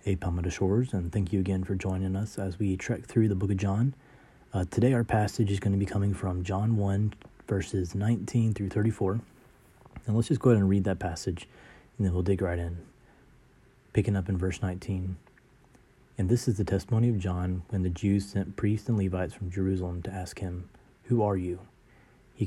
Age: 30-49